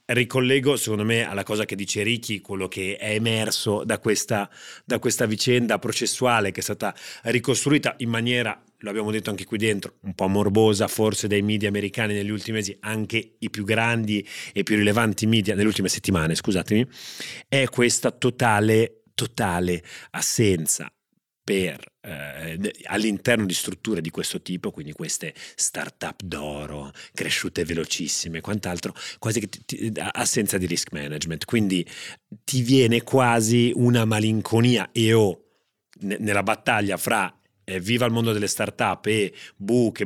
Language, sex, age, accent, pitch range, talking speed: Italian, male, 30-49, native, 95-115 Hz, 140 wpm